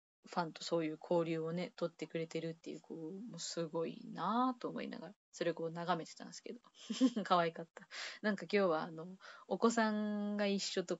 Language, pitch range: Japanese, 165-210 Hz